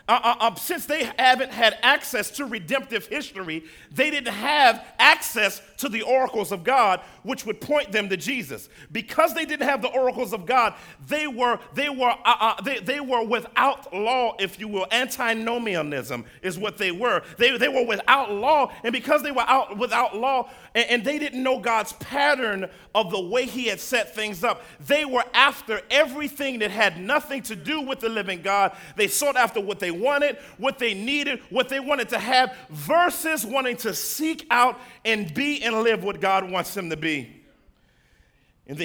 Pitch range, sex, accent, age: 200-260 Hz, male, American, 40-59